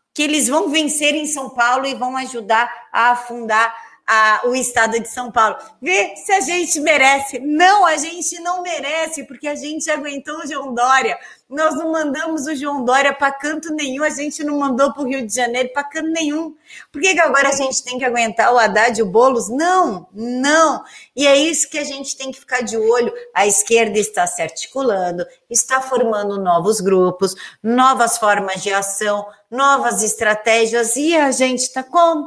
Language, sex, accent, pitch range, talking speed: Portuguese, female, Brazilian, 225-285 Hz, 190 wpm